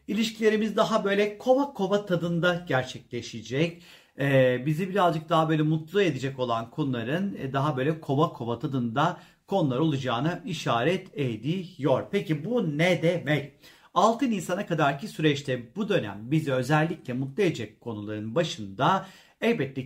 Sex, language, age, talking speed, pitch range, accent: male, Turkish, 40-59, 125 wpm, 135-175 Hz, native